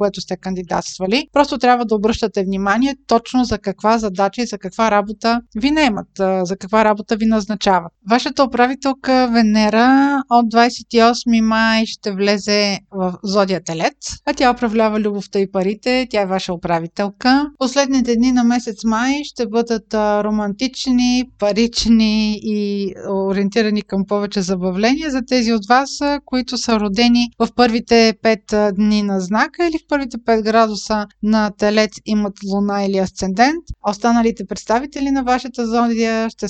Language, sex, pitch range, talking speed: Bulgarian, female, 205-245 Hz, 145 wpm